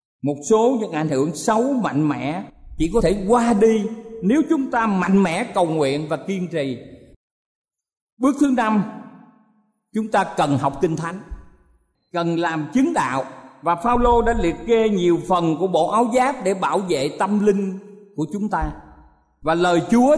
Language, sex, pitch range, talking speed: Vietnamese, male, 165-250 Hz, 175 wpm